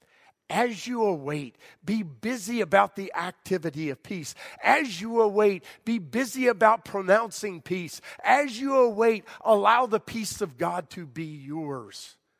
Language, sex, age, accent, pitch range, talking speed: English, male, 50-69, American, 115-180 Hz, 140 wpm